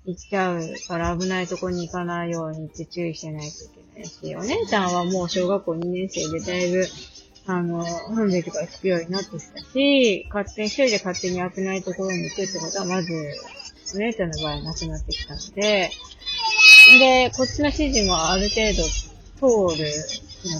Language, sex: Japanese, female